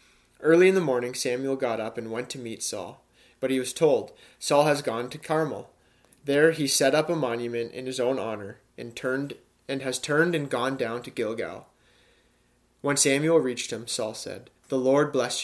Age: 30-49